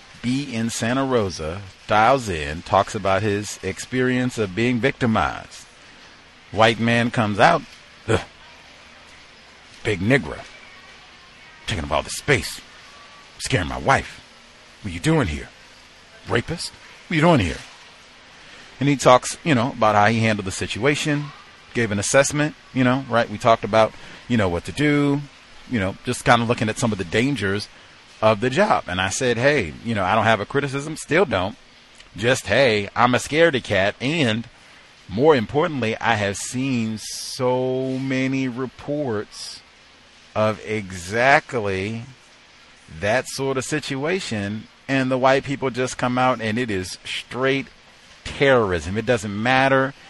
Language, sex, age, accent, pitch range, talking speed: English, male, 40-59, American, 105-130 Hz, 150 wpm